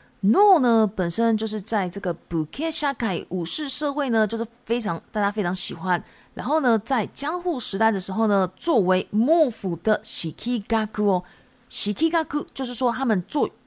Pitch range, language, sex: 190-245 Hz, Japanese, female